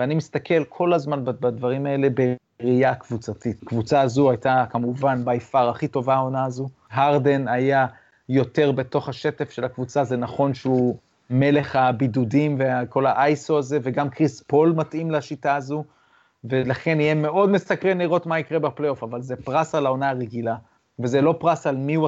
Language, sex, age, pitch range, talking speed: Hebrew, male, 30-49, 125-150 Hz, 160 wpm